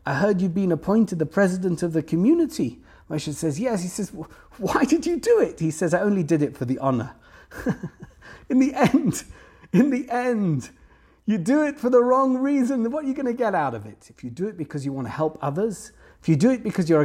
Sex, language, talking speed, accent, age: male, English, 235 wpm, British, 40-59